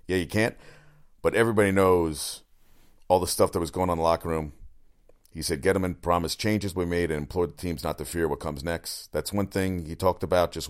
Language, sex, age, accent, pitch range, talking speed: English, male, 40-59, American, 75-95 Hz, 240 wpm